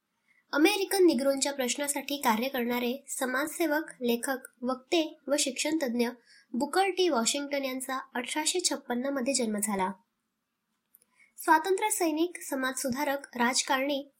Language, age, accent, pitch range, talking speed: Marathi, 20-39, native, 245-295 Hz, 85 wpm